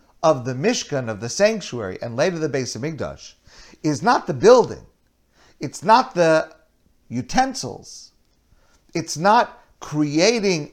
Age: 50-69